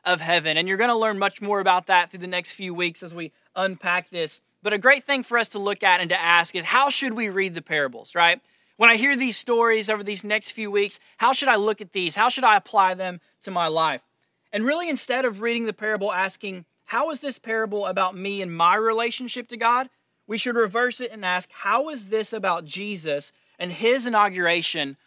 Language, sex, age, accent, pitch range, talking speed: English, male, 20-39, American, 175-220 Hz, 230 wpm